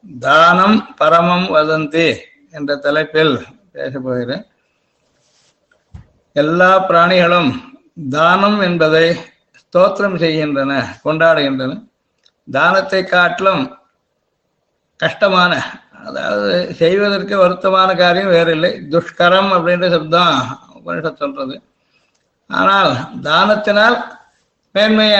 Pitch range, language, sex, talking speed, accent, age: 160-195 Hz, Tamil, male, 70 wpm, native, 60-79